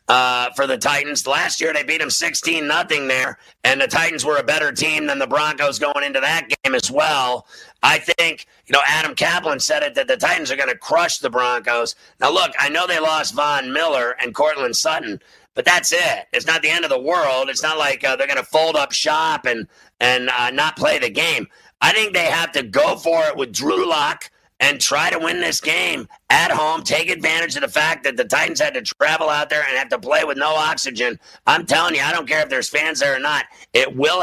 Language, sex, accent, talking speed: English, male, American, 240 wpm